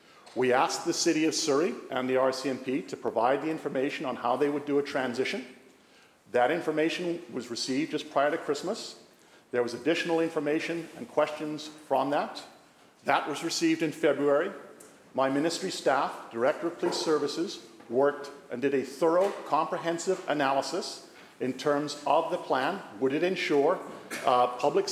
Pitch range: 135-165 Hz